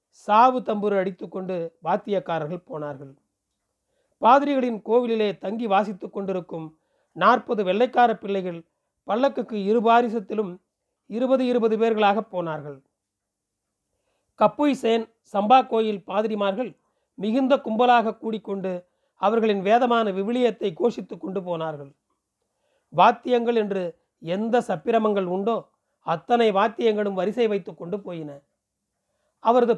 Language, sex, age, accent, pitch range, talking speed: Tamil, male, 40-59, native, 185-230 Hz, 85 wpm